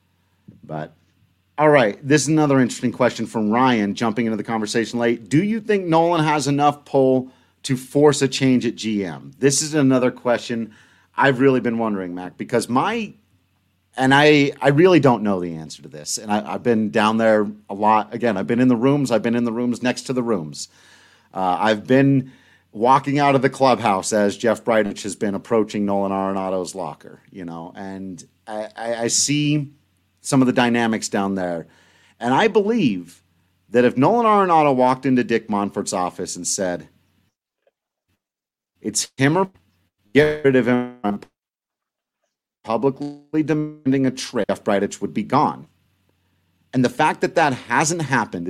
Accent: American